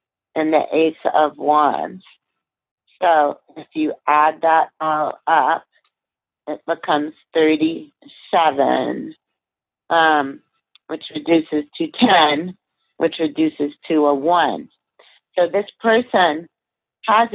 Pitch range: 150-175 Hz